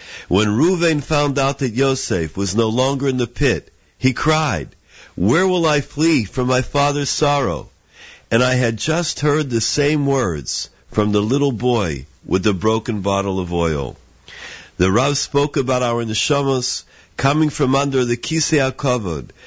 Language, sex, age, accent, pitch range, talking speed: English, male, 50-69, American, 95-135 Hz, 155 wpm